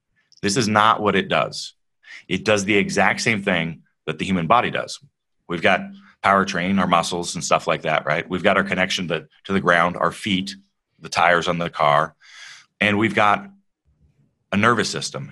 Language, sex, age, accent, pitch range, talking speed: English, male, 30-49, American, 95-120 Hz, 185 wpm